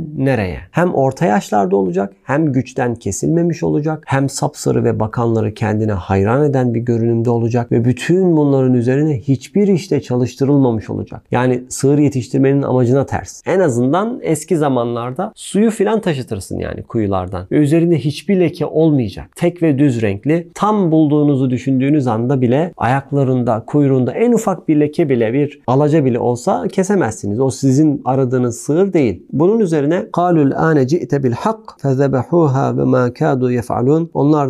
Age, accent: 40-59, native